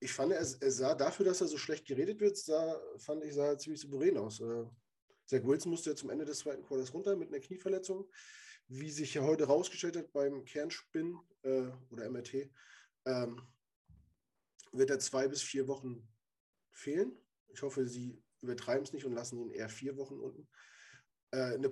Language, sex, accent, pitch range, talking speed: German, male, German, 125-150 Hz, 185 wpm